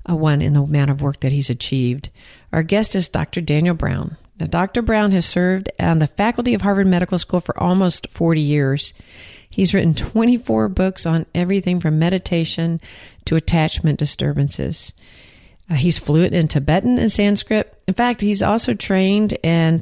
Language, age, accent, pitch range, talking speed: English, 50-69, American, 145-180 Hz, 170 wpm